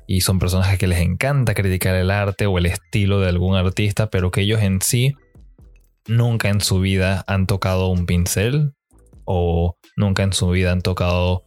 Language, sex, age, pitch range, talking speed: Spanish, male, 20-39, 95-115 Hz, 190 wpm